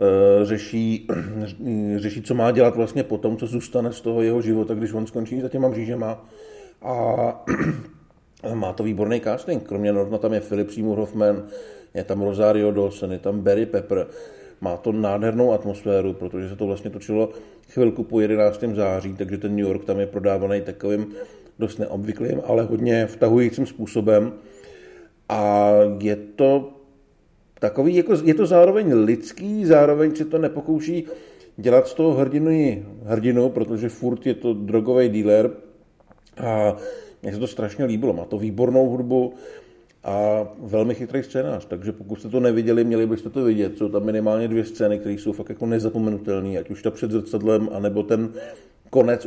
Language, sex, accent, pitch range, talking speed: Czech, male, native, 105-120 Hz, 160 wpm